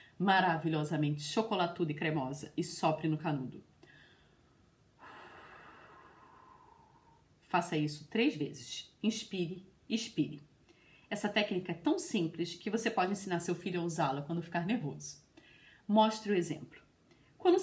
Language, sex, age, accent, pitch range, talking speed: Portuguese, female, 30-49, Brazilian, 170-280 Hz, 115 wpm